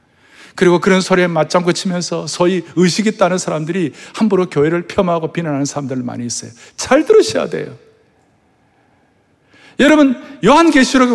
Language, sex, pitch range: Korean, male, 175-270 Hz